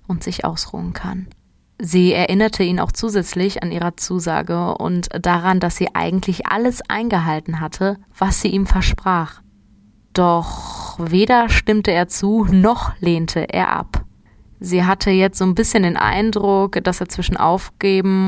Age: 20-39